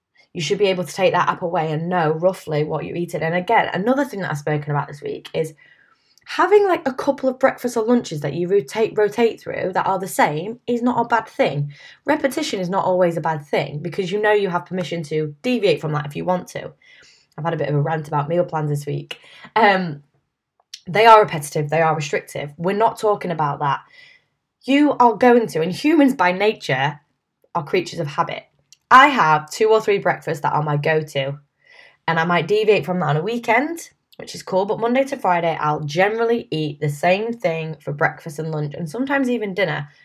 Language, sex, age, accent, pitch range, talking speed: English, female, 10-29, British, 155-210 Hz, 215 wpm